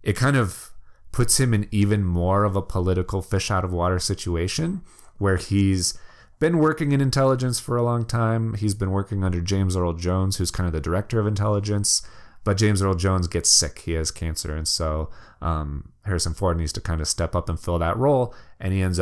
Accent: American